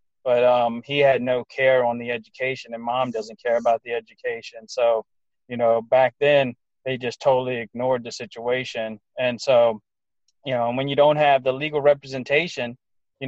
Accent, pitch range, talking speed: American, 120-140 Hz, 175 wpm